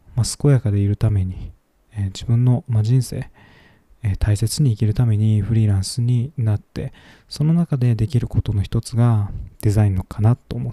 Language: Japanese